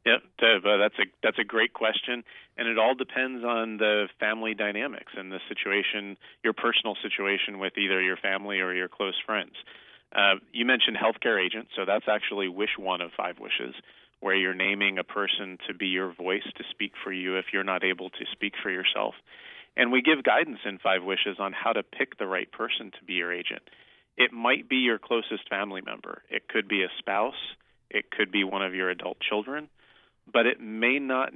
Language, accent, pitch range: English, American, 95-115 Hz